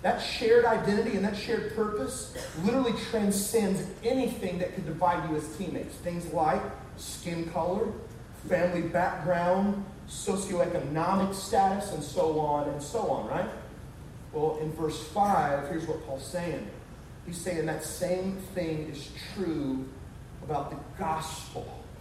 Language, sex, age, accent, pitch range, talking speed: English, male, 30-49, American, 155-195 Hz, 135 wpm